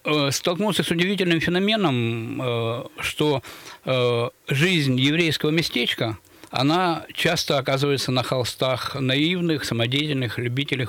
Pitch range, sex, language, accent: 125-145 Hz, male, Russian, native